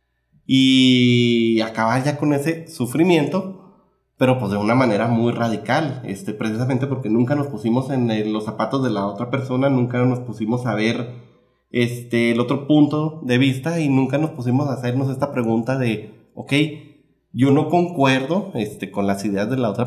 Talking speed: 170 wpm